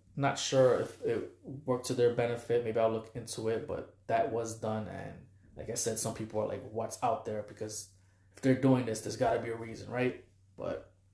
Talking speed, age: 220 wpm, 20-39